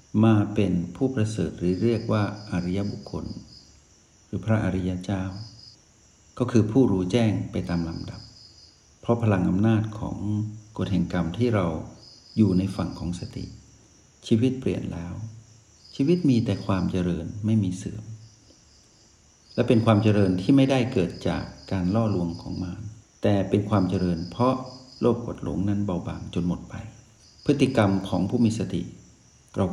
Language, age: Thai, 60-79